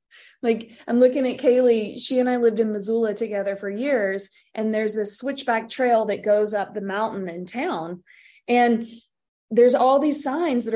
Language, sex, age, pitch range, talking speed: English, female, 20-39, 200-245 Hz, 180 wpm